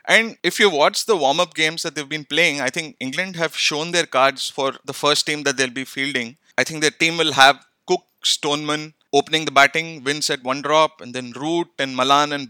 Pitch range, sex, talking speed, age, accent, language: 135-155 Hz, male, 225 wpm, 20-39, Indian, English